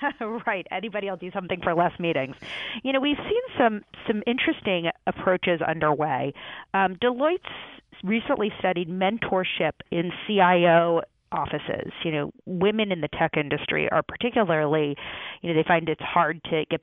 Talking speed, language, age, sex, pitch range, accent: 155 wpm, English, 40-59, female, 160-195 Hz, American